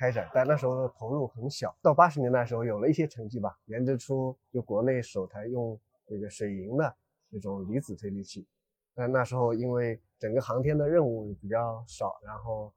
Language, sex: Chinese, male